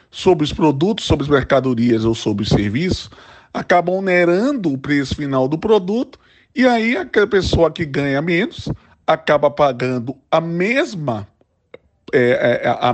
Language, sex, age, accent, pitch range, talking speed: Portuguese, male, 20-39, Brazilian, 130-180 Hz, 145 wpm